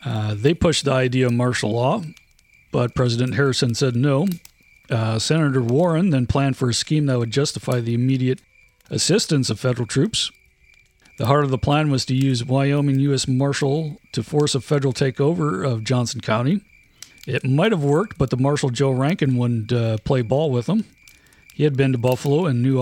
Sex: male